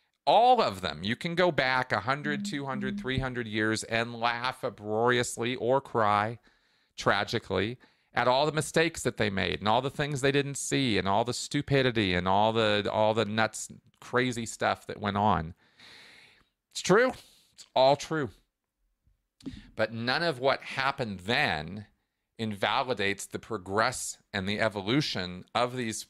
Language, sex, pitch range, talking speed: English, male, 105-130 Hz, 145 wpm